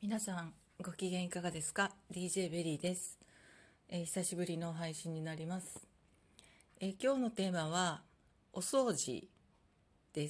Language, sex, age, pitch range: Japanese, female, 40-59, 155-215 Hz